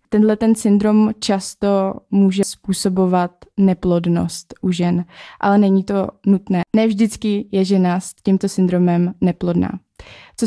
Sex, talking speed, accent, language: female, 120 wpm, native, Czech